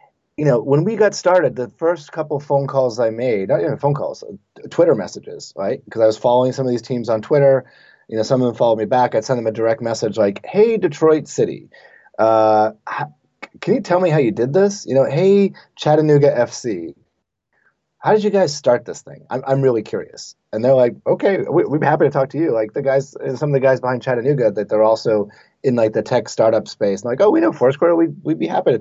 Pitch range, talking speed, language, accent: 115-165 Hz, 240 wpm, English, American